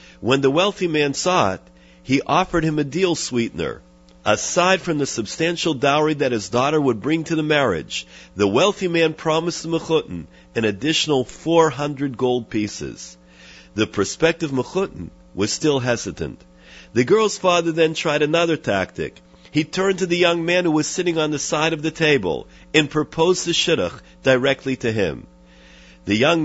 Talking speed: 170 wpm